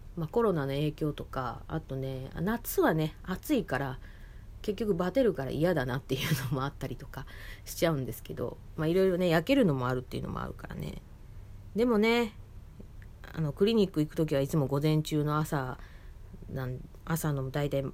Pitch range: 105-160 Hz